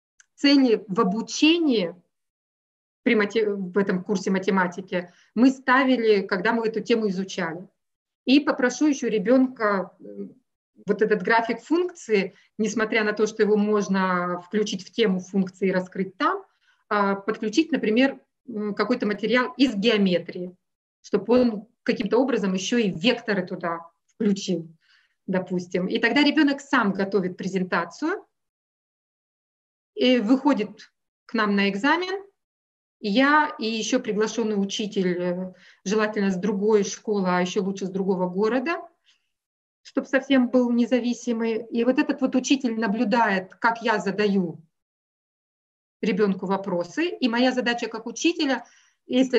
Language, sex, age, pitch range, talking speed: Russian, female, 30-49, 195-250 Hz, 120 wpm